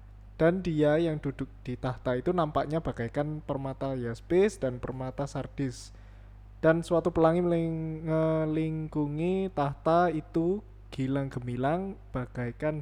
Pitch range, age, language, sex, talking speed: 125-155 Hz, 20-39, Indonesian, male, 110 wpm